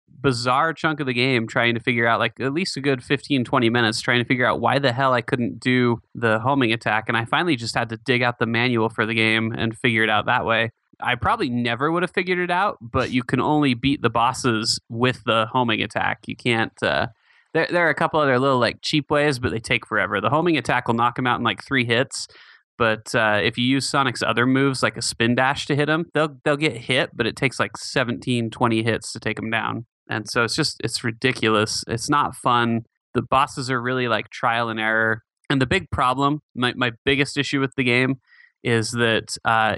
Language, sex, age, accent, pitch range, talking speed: English, male, 20-39, American, 115-135 Hz, 235 wpm